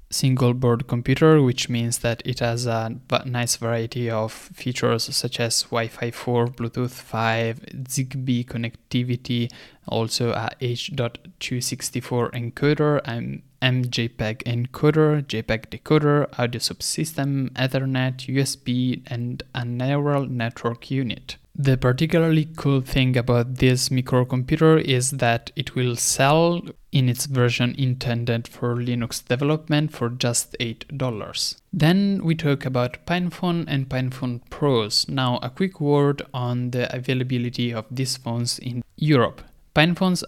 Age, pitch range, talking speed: 20-39, 120-140 Hz, 120 wpm